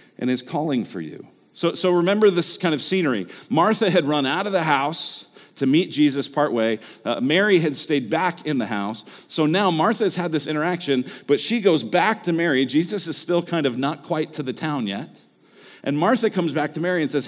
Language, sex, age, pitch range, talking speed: English, male, 40-59, 125-175 Hz, 220 wpm